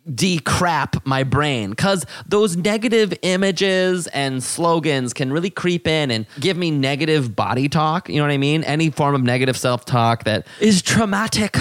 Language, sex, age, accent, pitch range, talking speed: English, male, 20-39, American, 130-180 Hz, 165 wpm